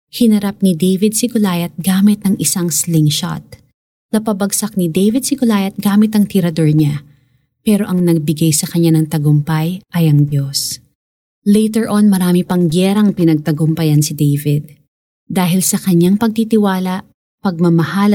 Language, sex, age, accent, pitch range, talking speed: Filipino, female, 20-39, native, 155-200 Hz, 130 wpm